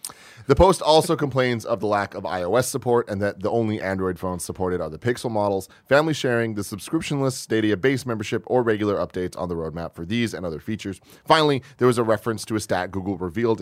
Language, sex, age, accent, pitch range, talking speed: English, male, 30-49, American, 95-125 Hz, 220 wpm